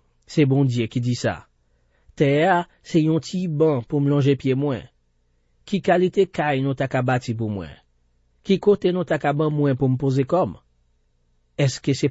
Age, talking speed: 40-59, 180 wpm